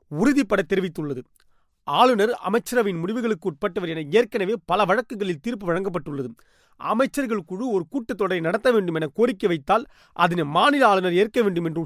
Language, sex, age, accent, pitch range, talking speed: Tamil, male, 30-49, native, 180-230 Hz, 125 wpm